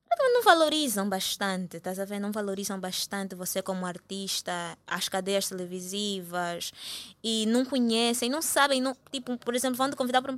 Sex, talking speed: female, 170 wpm